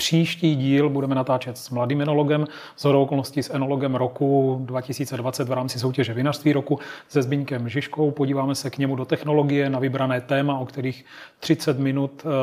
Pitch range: 130-145 Hz